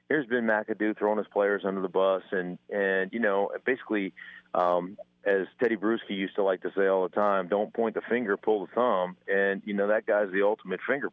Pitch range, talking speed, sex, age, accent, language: 95-110 Hz, 220 wpm, male, 40-59, American, English